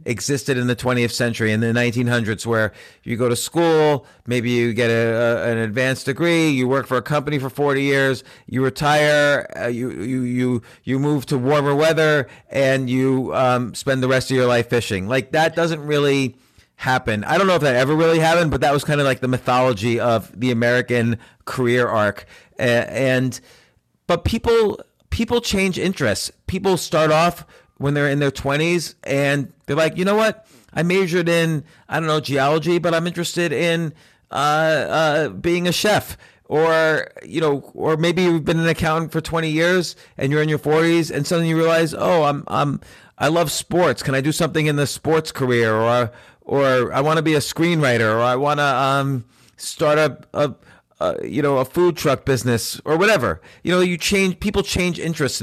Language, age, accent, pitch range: English, 40-59, American, 125-160 Hz